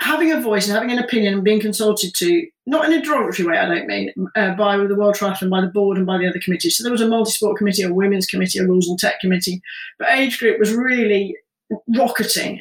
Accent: British